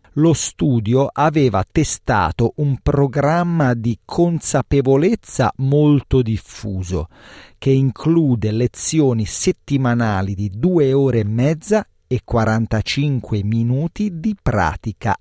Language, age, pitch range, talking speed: Italian, 40-59, 105-160 Hz, 95 wpm